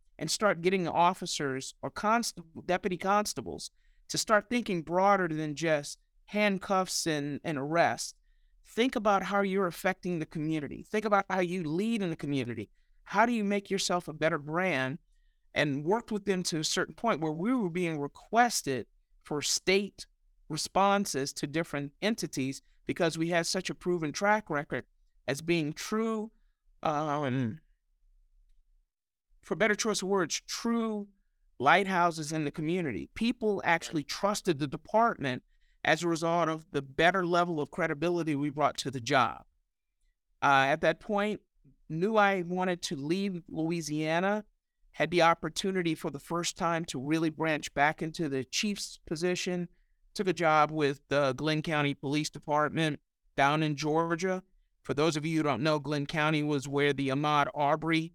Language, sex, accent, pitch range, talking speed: English, male, American, 150-190 Hz, 155 wpm